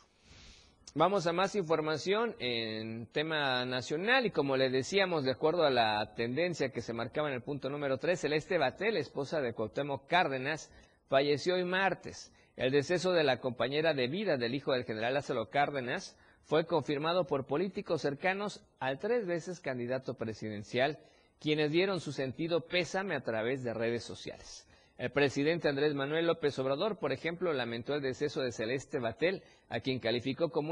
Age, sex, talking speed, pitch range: 50-69, male, 165 wpm, 120-165 Hz